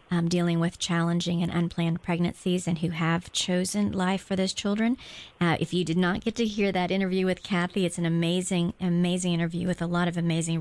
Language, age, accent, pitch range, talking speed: English, 40-59, American, 165-195 Hz, 210 wpm